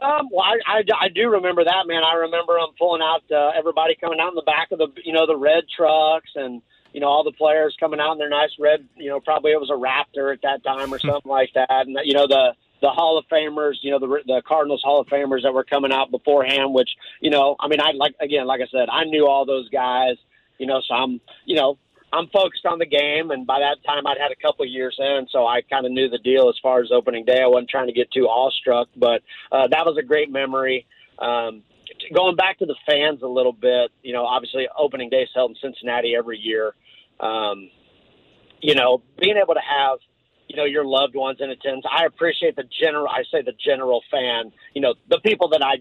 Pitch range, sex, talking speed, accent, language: 130-165 Hz, male, 245 wpm, American, English